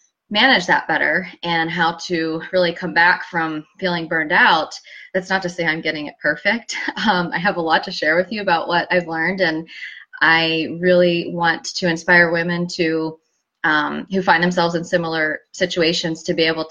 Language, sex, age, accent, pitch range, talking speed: English, female, 20-39, American, 165-185 Hz, 185 wpm